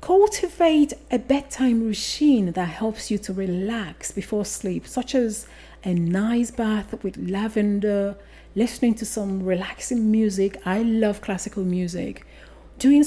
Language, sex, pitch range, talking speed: English, female, 190-235 Hz, 130 wpm